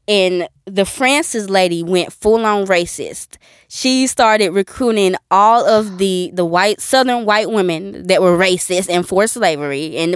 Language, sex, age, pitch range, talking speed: English, female, 20-39, 200-270 Hz, 155 wpm